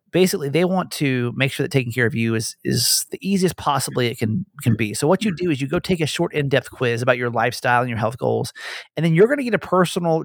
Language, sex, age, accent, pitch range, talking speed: English, male, 30-49, American, 125-170 Hz, 275 wpm